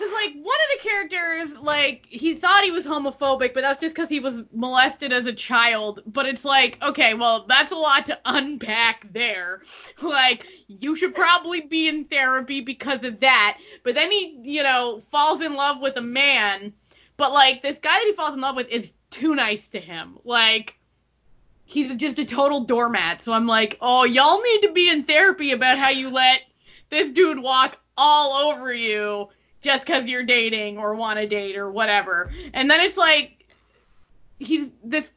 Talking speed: 190 wpm